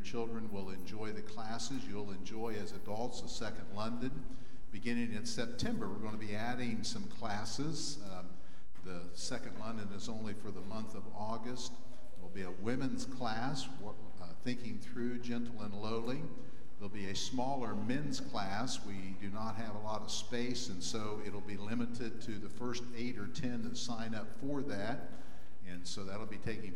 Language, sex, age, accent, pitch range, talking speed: English, male, 50-69, American, 100-120 Hz, 180 wpm